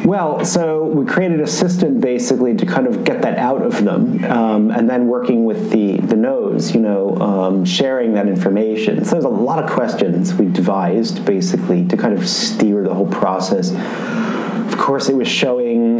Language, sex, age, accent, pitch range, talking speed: English, male, 30-49, American, 95-120 Hz, 190 wpm